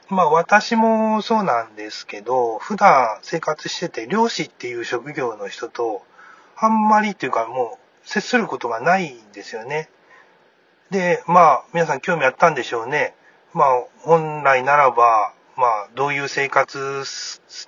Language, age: Japanese, 30-49